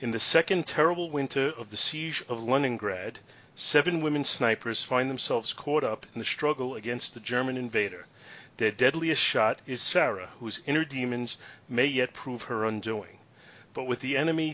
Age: 40-59